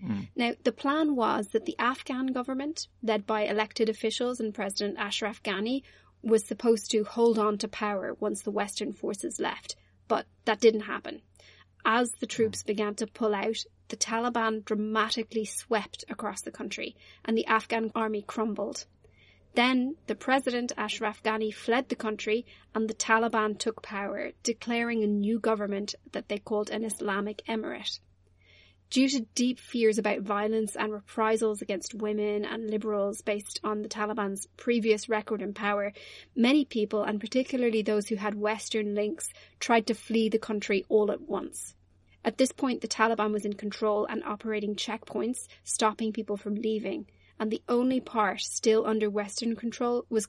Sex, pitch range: female, 210-230 Hz